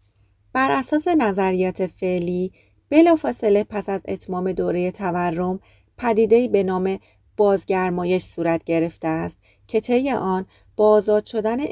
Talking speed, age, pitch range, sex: 115 wpm, 30-49, 175-215 Hz, female